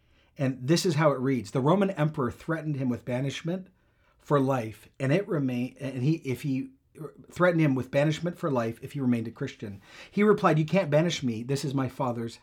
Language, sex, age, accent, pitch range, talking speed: English, male, 40-59, American, 120-155 Hz, 210 wpm